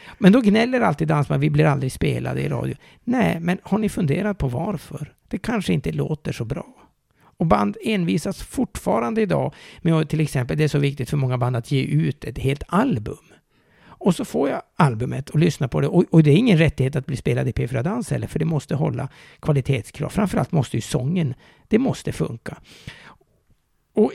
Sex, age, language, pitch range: male, 60-79, Swedish, 130-170 Hz